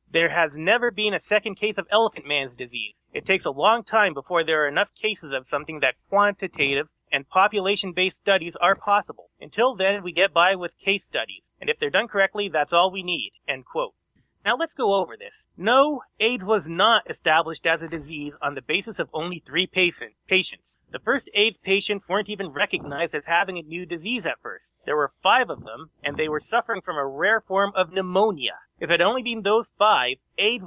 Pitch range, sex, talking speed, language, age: 165-215 Hz, male, 205 wpm, English, 30-49